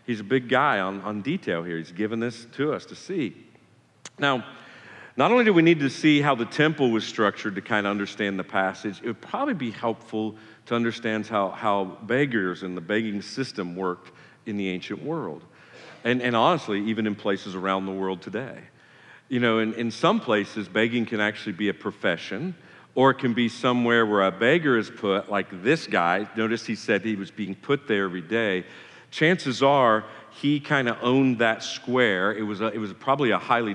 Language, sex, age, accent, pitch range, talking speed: English, male, 50-69, American, 100-125 Hz, 205 wpm